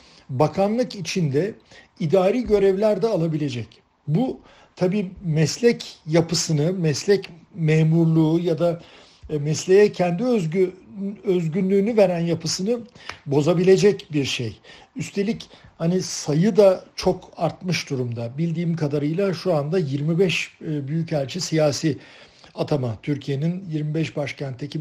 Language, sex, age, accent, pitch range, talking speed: Turkish, male, 60-79, native, 150-195 Hz, 95 wpm